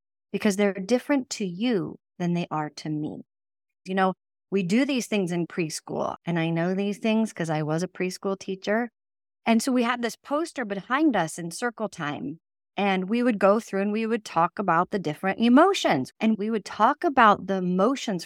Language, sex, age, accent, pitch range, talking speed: English, female, 40-59, American, 165-220 Hz, 195 wpm